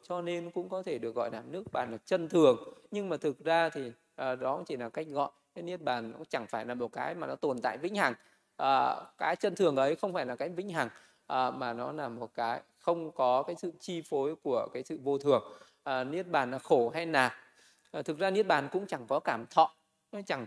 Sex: male